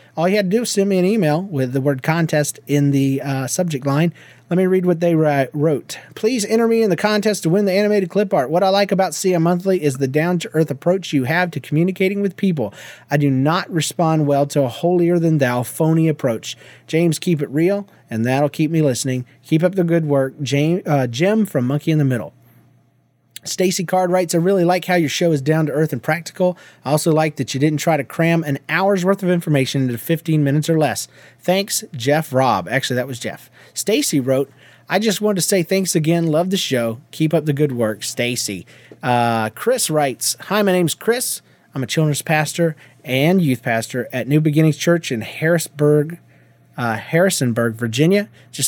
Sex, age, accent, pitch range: male, 30-49, American, 135-180 Hz